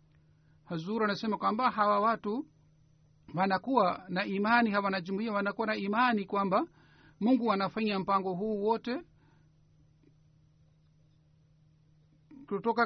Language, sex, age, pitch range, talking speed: Swahili, male, 50-69, 170-220 Hz, 100 wpm